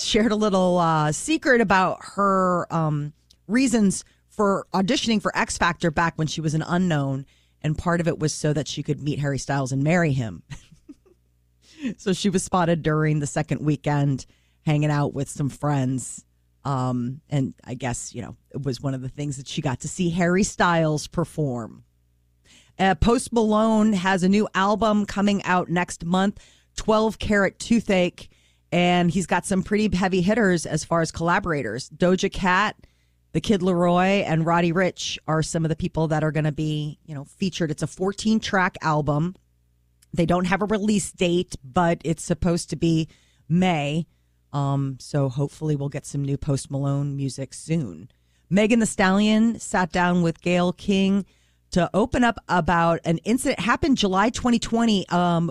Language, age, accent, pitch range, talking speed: English, 40-59, American, 145-190 Hz, 170 wpm